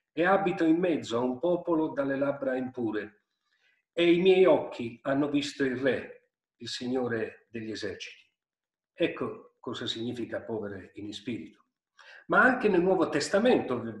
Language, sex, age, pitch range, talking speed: Italian, male, 50-69, 135-195 Hz, 140 wpm